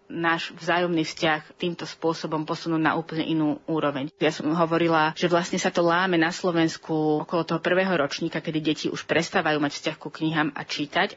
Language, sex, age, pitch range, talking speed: Slovak, female, 30-49, 160-185 Hz, 185 wpm